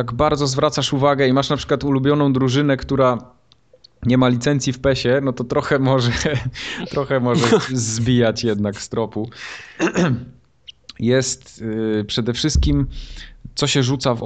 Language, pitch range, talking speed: Polish, 110-135 Hz, 140 wpm